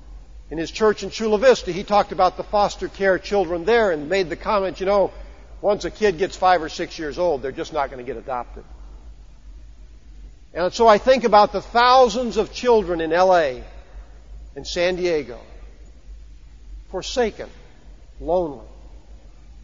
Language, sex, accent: English, male, American